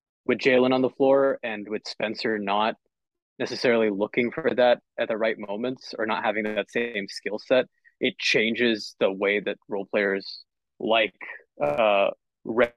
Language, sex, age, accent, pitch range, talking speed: English, male, 20-39, American, 105-130 Hz, 155 wpm